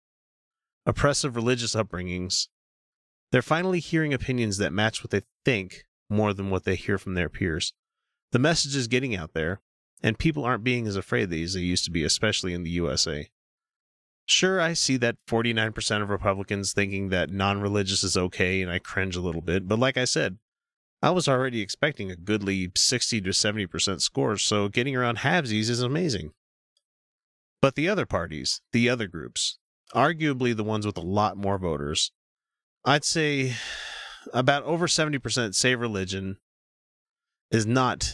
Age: 30-49